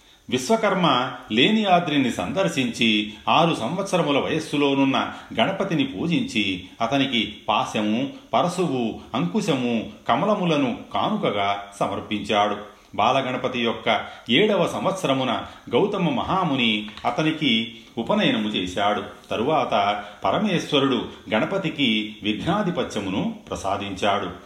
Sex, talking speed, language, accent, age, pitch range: male, 70 wpm, Telugu, native, 40-59, 105-150 Hz